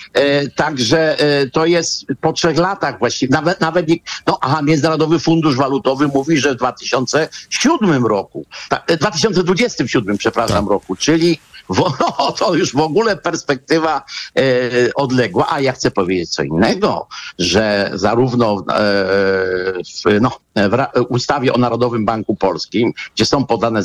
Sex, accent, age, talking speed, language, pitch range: male, native, 50-69, 135 wpm, Polish, 110-155 Hz